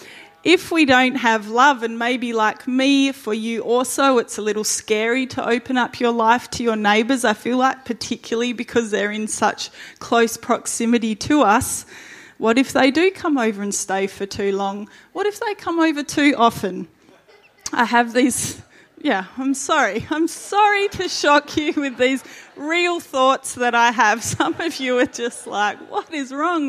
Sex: female